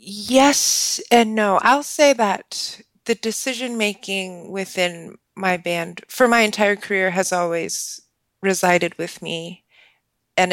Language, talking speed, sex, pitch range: English, 120 wpm, female, 170-205 Hz